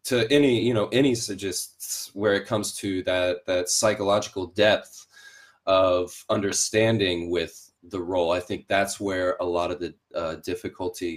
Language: English